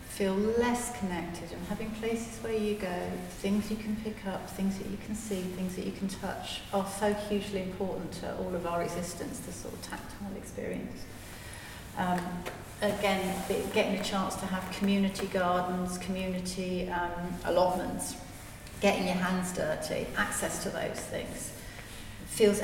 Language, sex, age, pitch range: English, female, 40-59, 170-200 Hz